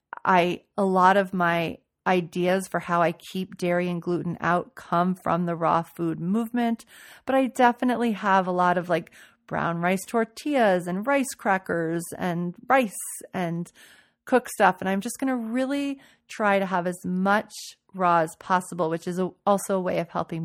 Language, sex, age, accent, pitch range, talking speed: English, female, 30-49, American, 175-205 Hz, 175 wpm